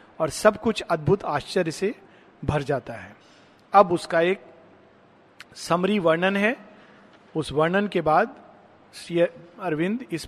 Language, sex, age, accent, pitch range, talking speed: Hindi, male, 50-69, native, 155-215 Hz, 130 wpm